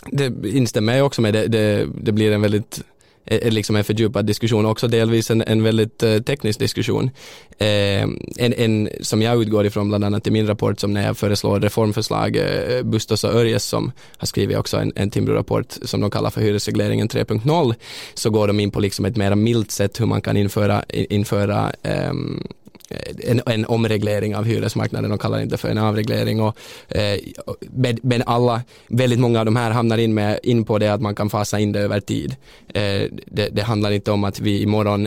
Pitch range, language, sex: 105-120 Hz, Swedish, male